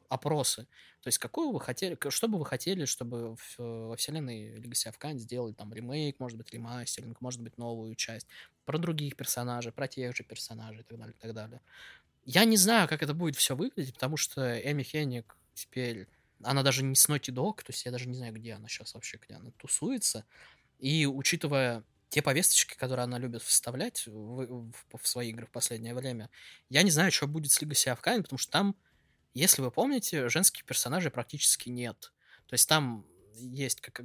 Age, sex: 20-39, male